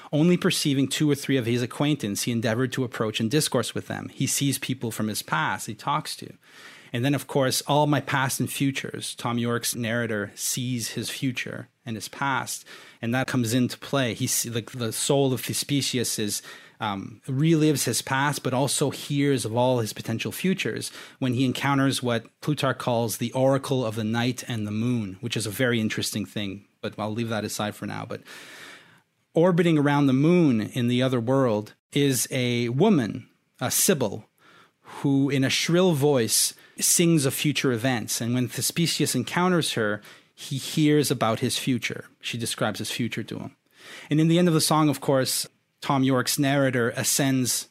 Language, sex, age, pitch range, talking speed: English, male, 30-49, 115-145 Hz, 185 wpm